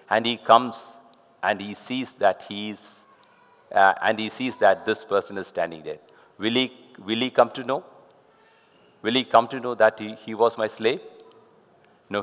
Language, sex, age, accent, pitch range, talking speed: English, male, 50-69, Indian, 100-150 Hz, 175 wpm